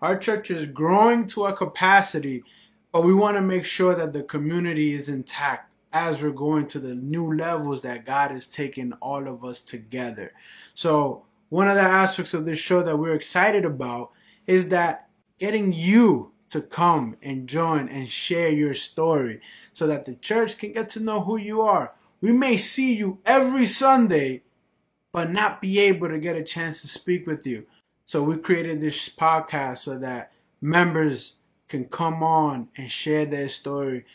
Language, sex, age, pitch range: English, male, 20-39, 135-180 Hz